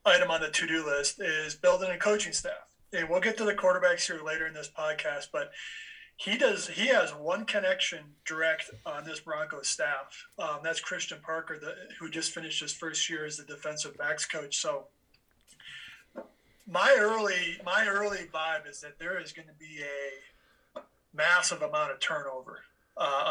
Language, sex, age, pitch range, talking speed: English, male, 20-39, 155-185 Hz, 170 wpm